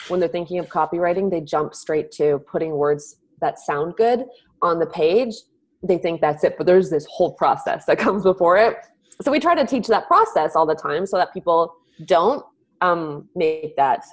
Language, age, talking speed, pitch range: English, 20-39, 200 wpm, 155-220 Hz